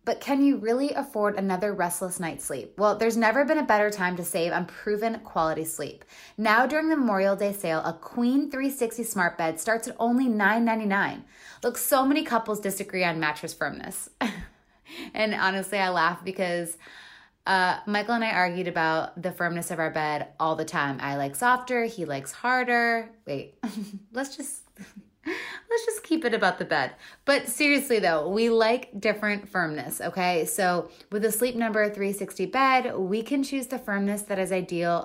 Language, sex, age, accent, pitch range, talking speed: English, female, 20-39, American, 170-235 Hz, 175 wpm